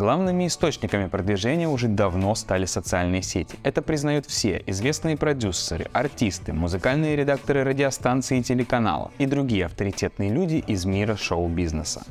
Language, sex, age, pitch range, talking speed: Russian, male, 20-39, 95-130 Hz, 130 wpm